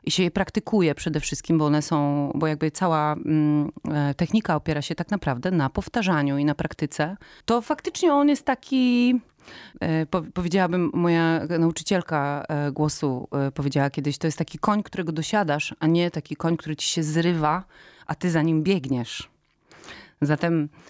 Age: 30-49